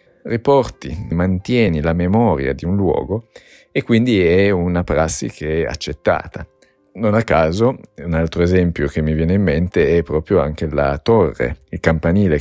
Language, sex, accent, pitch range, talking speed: Italian, male, native, 80-100 Hz, 160 wpm